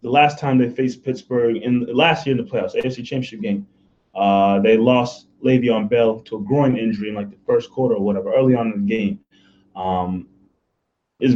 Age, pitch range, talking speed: 20-39, 105-135 Hz, 200 wpm